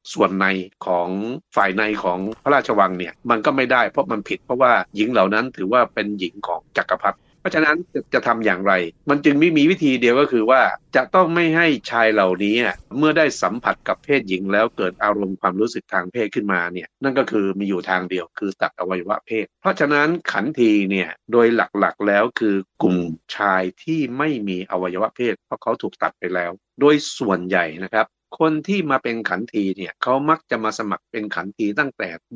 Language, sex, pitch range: Thai, male, 95-145 Hz